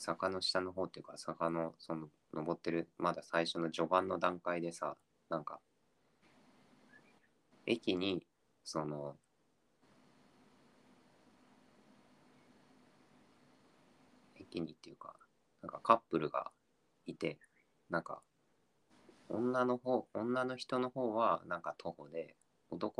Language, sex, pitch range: Japanese, male, 80-95 Hz